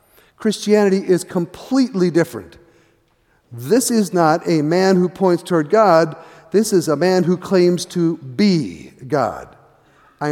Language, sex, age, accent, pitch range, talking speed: English, male, 50-69, American, 150-195 Hz, 135 wpm